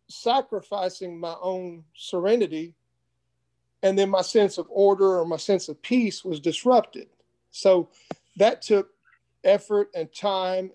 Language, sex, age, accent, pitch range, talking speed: English, male, 40-59, American, 160-205 Hz, 130 wpm